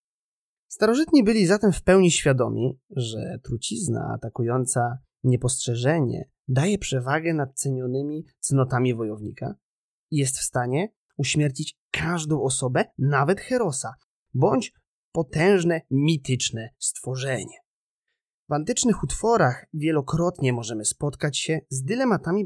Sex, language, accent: male, Polish, native